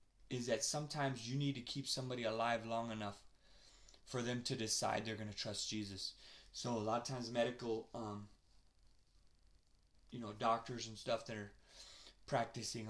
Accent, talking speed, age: American, 165 wpm, 20-39